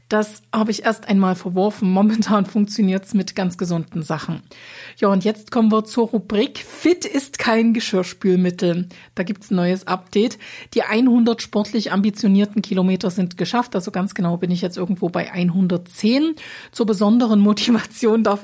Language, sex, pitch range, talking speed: German, female, 190-230 Hz, 165 wpm